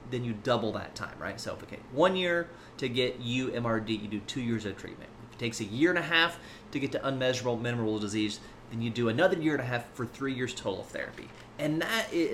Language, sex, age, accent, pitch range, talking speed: English, male, 30-49, American, 105-135 Hz, 240 wpm